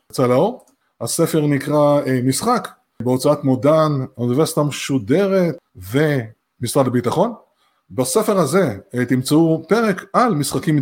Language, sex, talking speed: Hebrew, male, 95 wpm